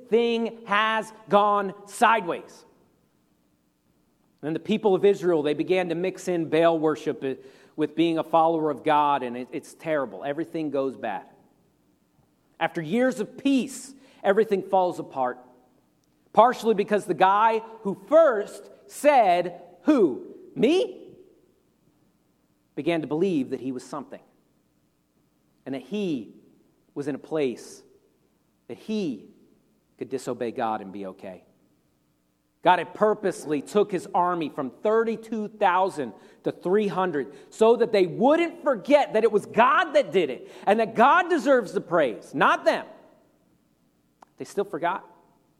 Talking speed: 130 wpm